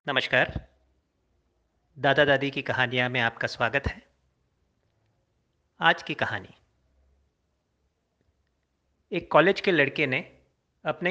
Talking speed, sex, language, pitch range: 95 wpm, male, Hindi, 90-150 Hz